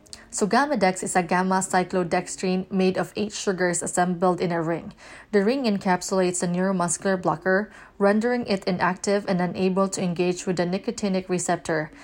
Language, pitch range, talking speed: English, 180-200 Hz, 150 wpm